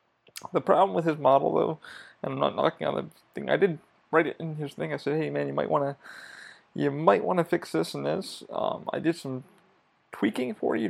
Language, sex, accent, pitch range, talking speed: English, male, American, 135-160 Hz, 215 wpm